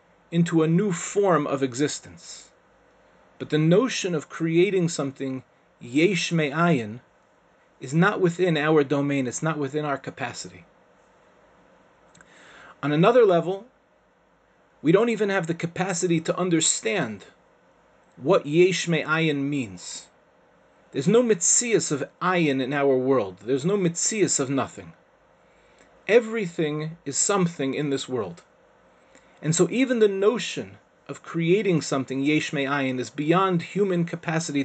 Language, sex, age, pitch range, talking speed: English, male, 30-49, 135-180 Hz, 125 wpm